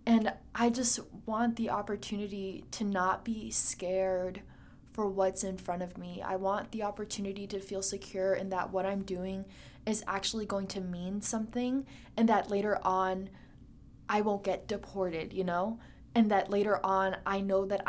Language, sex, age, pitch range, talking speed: English, female, 20-39, 190-225 Hz, 170 wpm